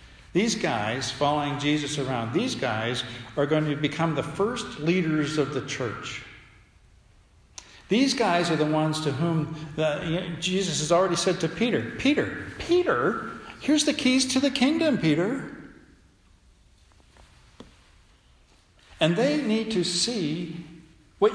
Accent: American